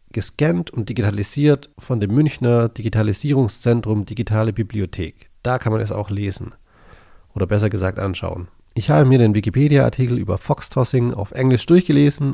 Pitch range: 100-135 Hz